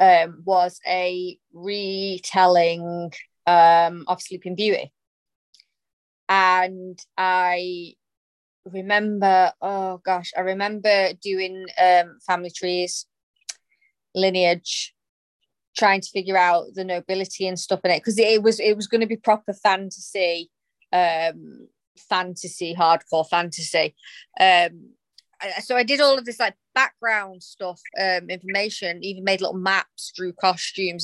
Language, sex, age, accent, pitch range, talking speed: English, female, 30-49, British, 180-210 Hz, 120 wpm